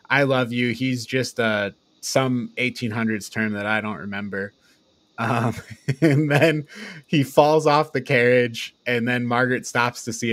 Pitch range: 110-140 Hz